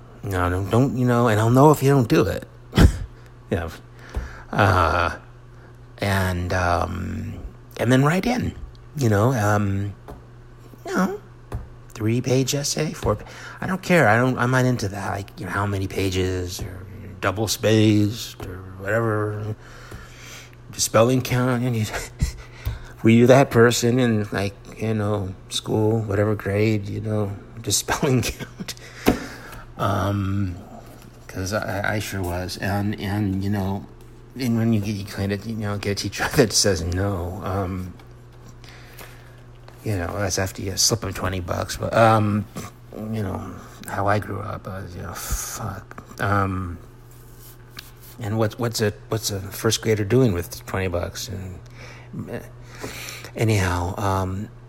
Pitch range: 100-120 Hz